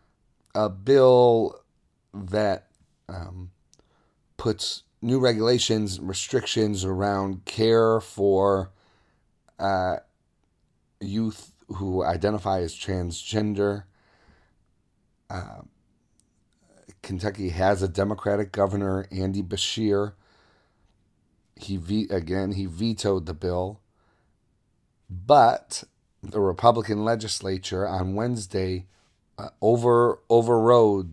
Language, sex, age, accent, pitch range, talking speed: English, male, 40-59, American, 95-110 Hz, 75 wpm